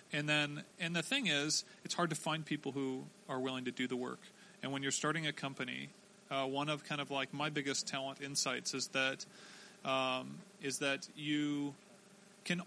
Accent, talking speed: American, 195 wpm